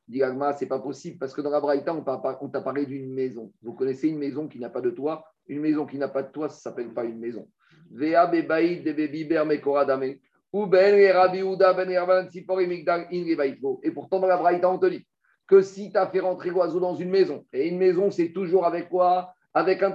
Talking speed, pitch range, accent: 185 wpm, 145-185 Hz, French